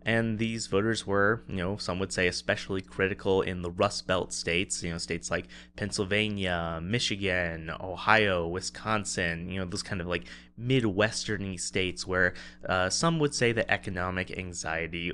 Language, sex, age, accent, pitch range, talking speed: English, male, 20-39, American, 90-125 Hz, 160 wpm